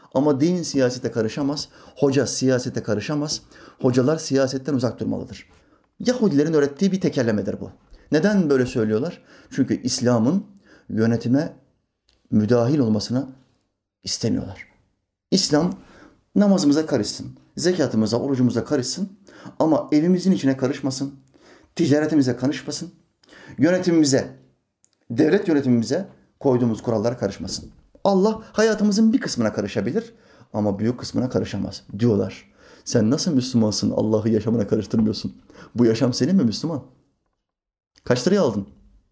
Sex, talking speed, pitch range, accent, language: male, 105 wpm, 110-150 Hz, native, Turkish